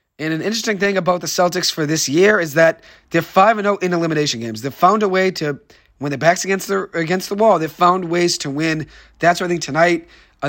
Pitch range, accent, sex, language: 150-185 Hz, American, male, English